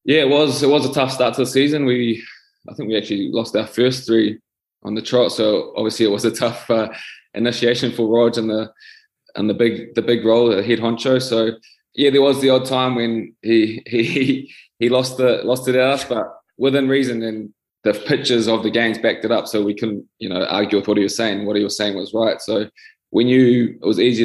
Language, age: English, 20-39